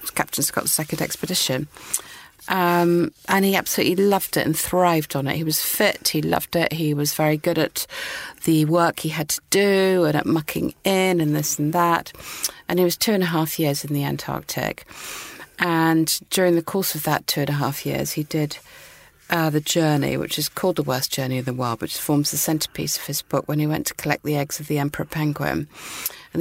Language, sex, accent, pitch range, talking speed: English, female, British, 140-170 Hz, 215 wpm